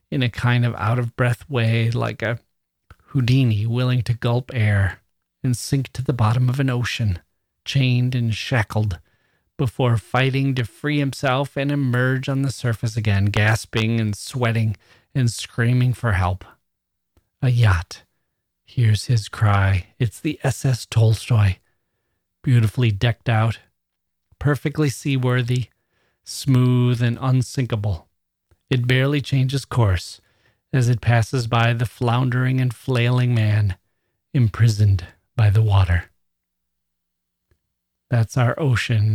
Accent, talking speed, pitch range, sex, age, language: American, 120 wpm, 105-130 Hz, male, 30-49, English